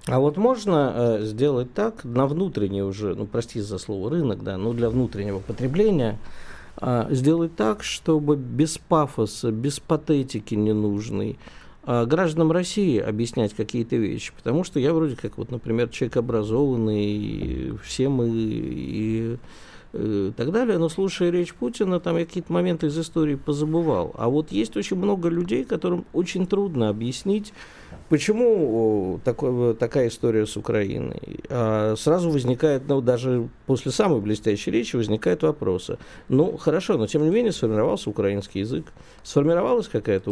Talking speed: 150 wpm